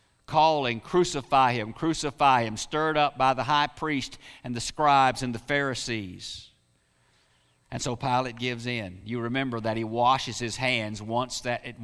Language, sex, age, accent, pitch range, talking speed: English, male, 50-69, American, 110-140 Hz, 155 wpm